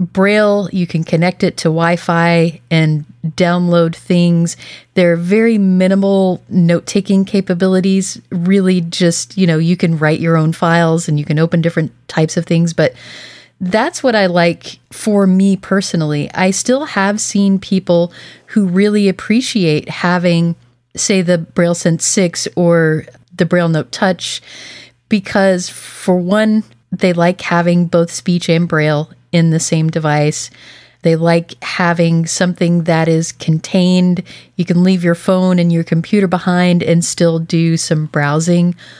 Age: 30-49